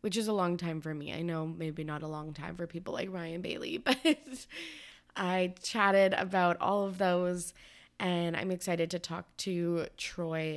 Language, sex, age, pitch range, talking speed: English, female, 20-39, 170-210 Hz, 185 wpm